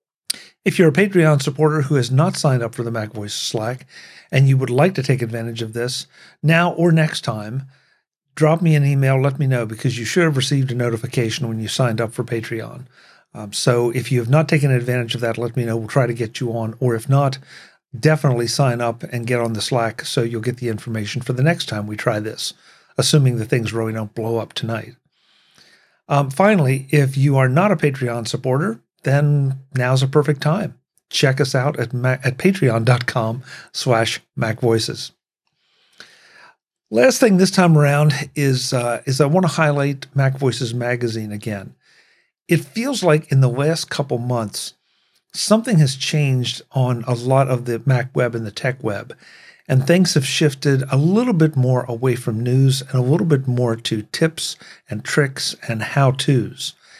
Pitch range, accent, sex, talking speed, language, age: 120-150 Hz, American, male, 190 wpm, English, 50-69